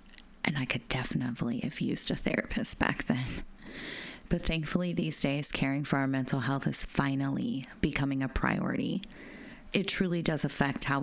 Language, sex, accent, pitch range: English, female, American, 140-195 Hz